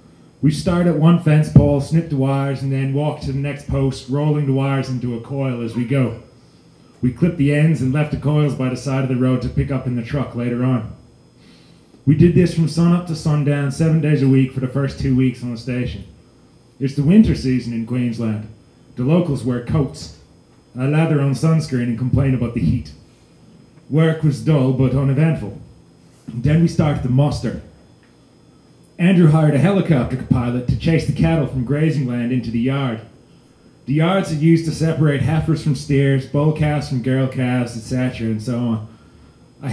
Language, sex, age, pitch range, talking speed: English, male, 30-49, 125-155 Hz, 195 wpm